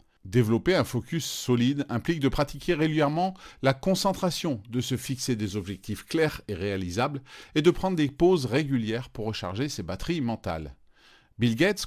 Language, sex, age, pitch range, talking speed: French, male, 40-59, 115-165 Hz, 155 wpm